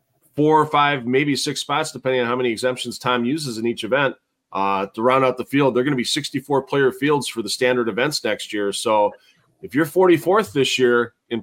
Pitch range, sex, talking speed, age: 115-145 Hz, male, 215 wpm, 30-49